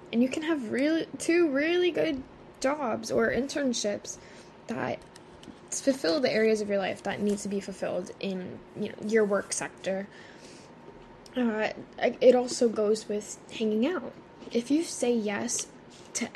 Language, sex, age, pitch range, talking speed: English, female, 10-29, 195-245 Hz, 150 wpm